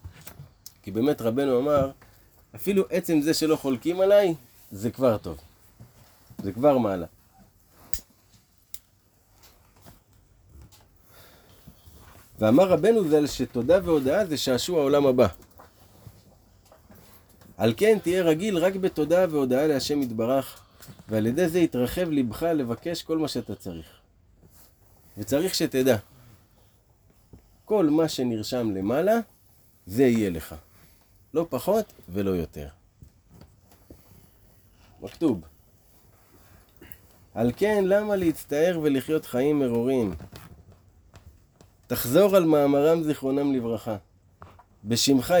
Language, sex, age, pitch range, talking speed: Hebrew, male, 30-49, 95-145 Hz, 95 wpm